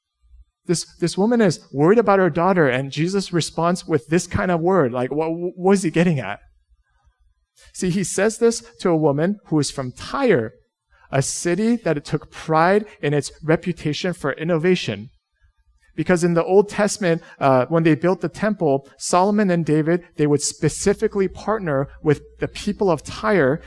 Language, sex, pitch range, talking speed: English, male, 135-190 Hz, 170 wpm